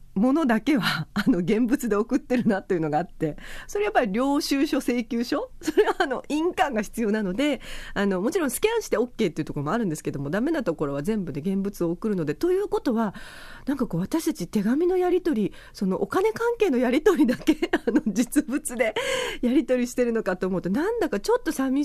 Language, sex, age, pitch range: Japanese, female, 40-59, 190-285 Hz